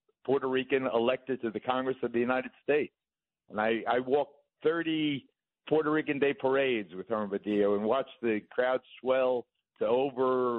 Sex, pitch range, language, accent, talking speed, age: male, 110-130 Hz, English, American, 165 wpm, 60-79